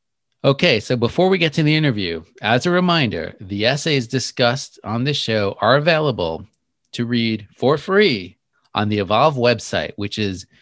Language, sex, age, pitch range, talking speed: English, male, 30-49, 115-145 Hz, 165 wpm